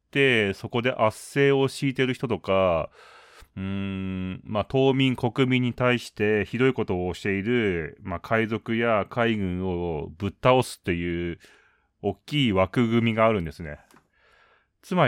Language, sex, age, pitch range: Japanese, male, 30-49, 95-130 Hz